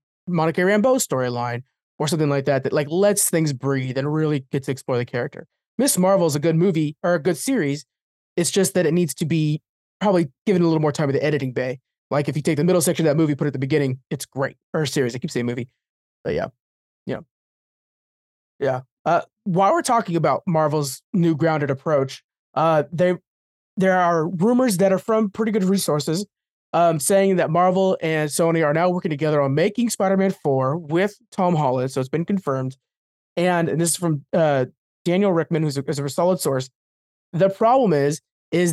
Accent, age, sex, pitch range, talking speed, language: American, 20-39, male, 150-195 Hz, 205 wpm, English